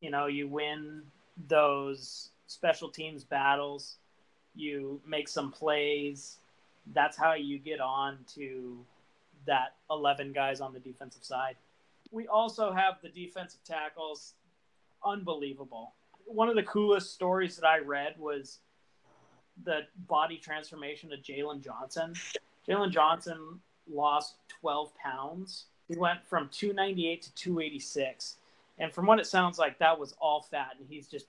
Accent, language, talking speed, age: American, English, 135 wpm, 30-49